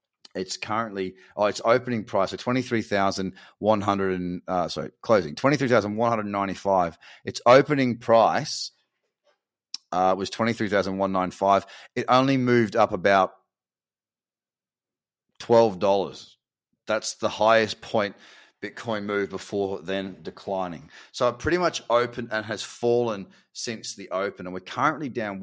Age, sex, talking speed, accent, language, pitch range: 30-49, male, 155 wpm, Australian, English, 95-115 Hz